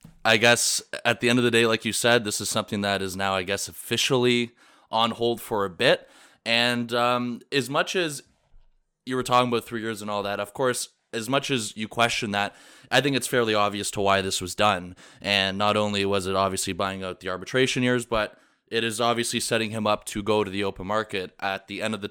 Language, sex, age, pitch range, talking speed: English, male, 20-39, 100-120 Hz, 235 wpm